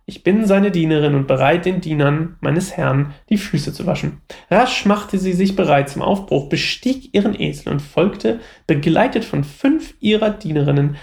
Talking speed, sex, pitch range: 170 wpm, male, 145-195 Hz